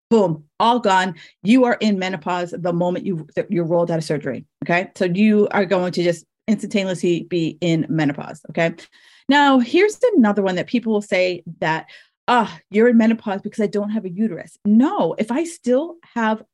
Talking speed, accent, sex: 180 wpm, American, female